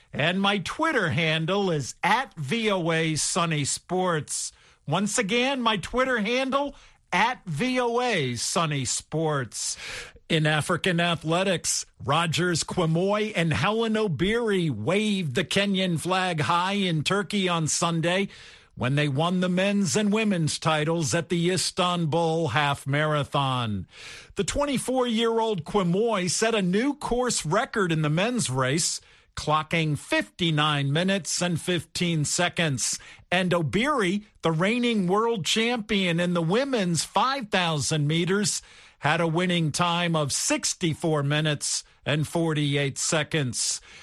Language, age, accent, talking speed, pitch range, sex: English, 50-69, American, 120 wpm, 155-215 Hz, male